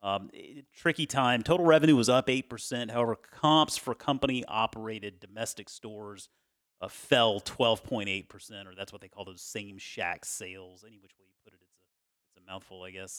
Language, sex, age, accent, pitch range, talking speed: English, male, 30-49, American, 105-140 Hz, 180 wpm